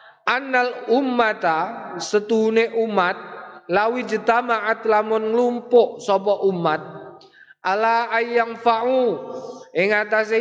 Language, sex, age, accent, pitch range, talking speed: Indonesian, male, 20-39, native, 170-230 Hz, 80 wpm